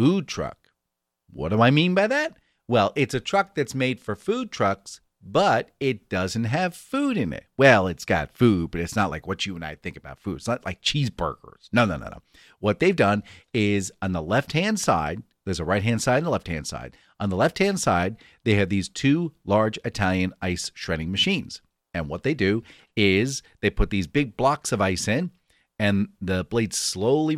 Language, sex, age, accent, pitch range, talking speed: English, male, 40-59, American, 90-125 Hz, 215 wpm